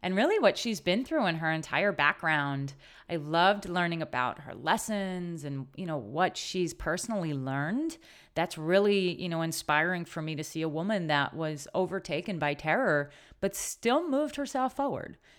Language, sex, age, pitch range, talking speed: English, female, 30-49, 155-210 Hz, 170 wpm